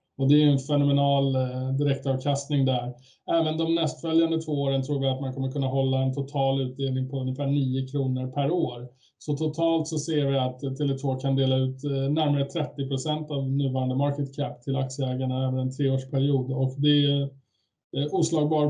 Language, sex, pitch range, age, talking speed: Swedish, male, 130-145 Hz, 20-39, 170 wpm